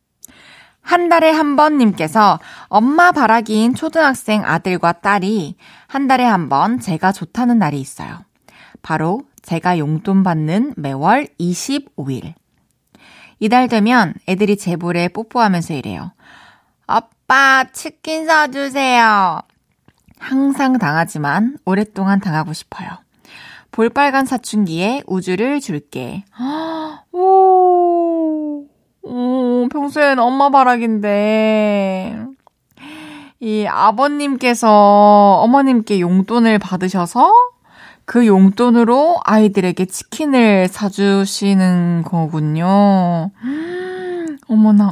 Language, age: Korean, 20-39